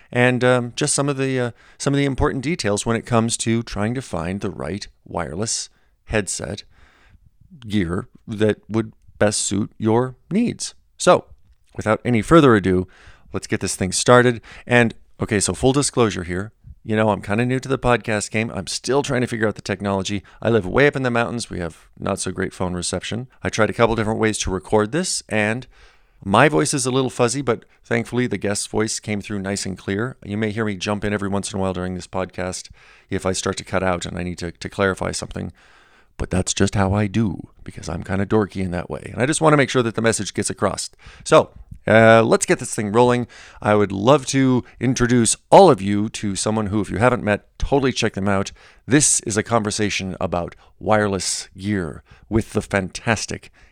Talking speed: 210 wpm